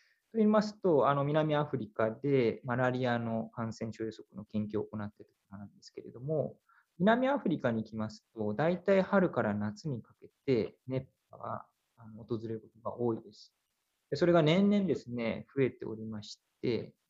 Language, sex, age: Japanese, male, 20-39